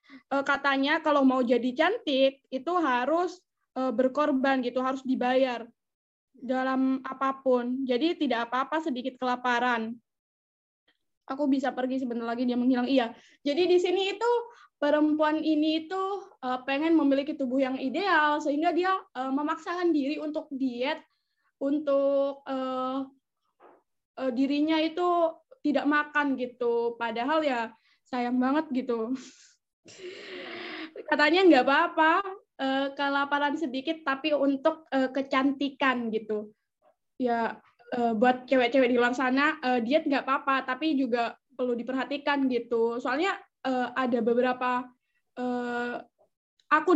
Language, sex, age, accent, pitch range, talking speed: Indonesian, female, 20-39, native, 250-300 Hz, 105 wpm